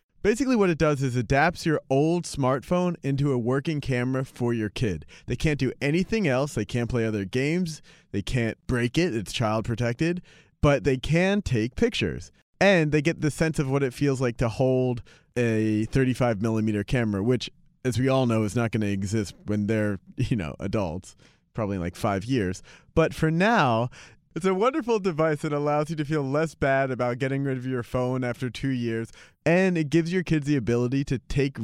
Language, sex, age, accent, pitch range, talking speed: English, male, 30-49, American, 115-155 Hz, 200 wpm